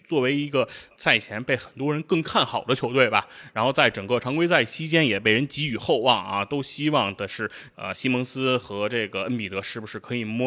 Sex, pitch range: male, 110-145 Hz